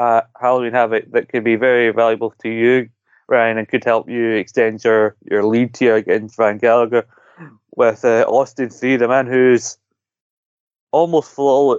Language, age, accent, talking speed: English, 20-39, British, 160 wpm